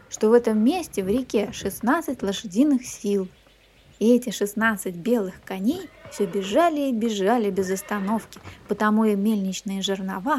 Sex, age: female, 20-39